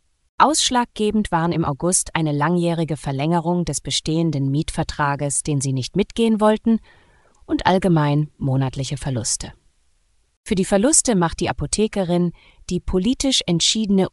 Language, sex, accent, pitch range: German, female, German, 145-195 Hz